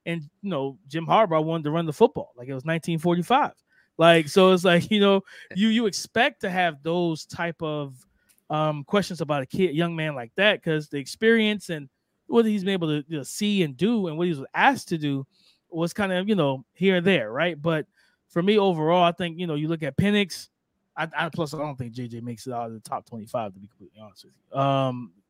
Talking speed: 235 wpm